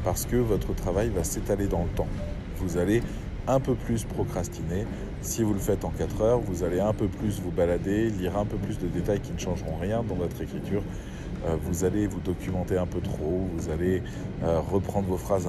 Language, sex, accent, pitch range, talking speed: French, male, French, 90-105 Hz, 210 wpm